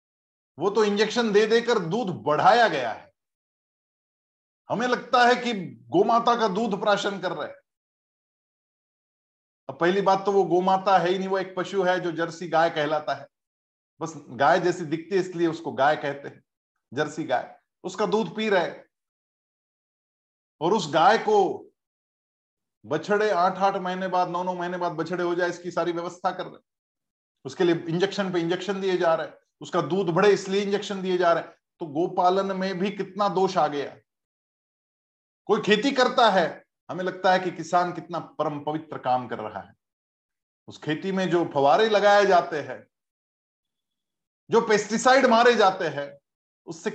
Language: Hindi